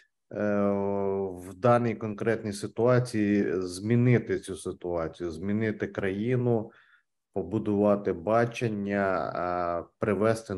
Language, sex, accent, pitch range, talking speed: Ukrainian, male, native, 100-120 Hz, 70 wpm